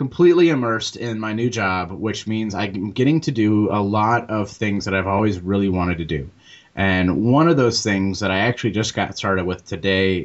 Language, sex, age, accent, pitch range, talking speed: English, male, 30-49, American, 95-115 Hz, 210 wpm